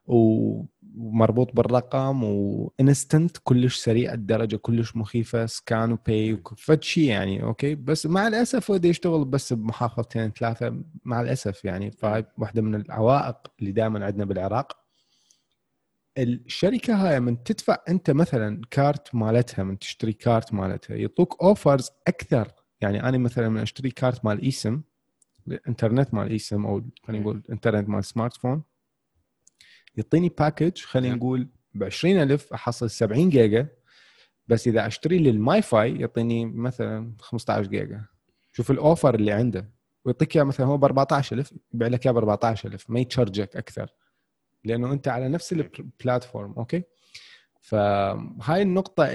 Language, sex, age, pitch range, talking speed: Arabic, male, 30-49, 110-140 Hz, 135 wpm